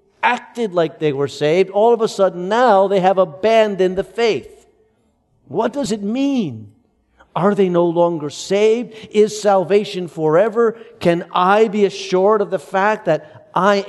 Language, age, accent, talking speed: English, 50-69, American, 155 wpm